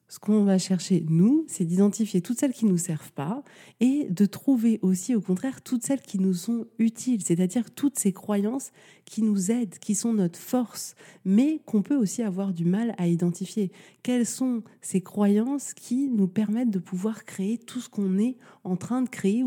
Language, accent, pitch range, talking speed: French, French, 180-225 Hz, 195 wpm